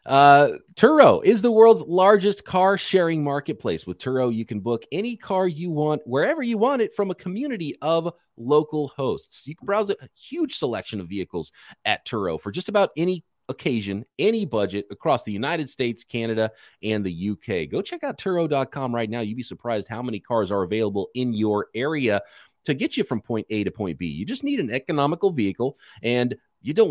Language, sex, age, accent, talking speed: English, male, 30-49, American, 195 wpm